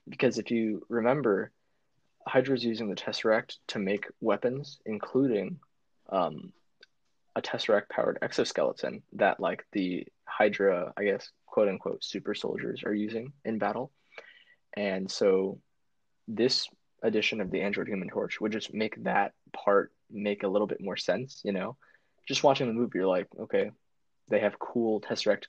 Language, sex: English, male